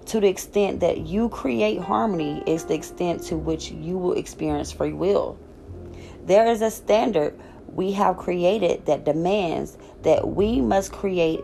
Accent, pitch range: American, 145-185 Hz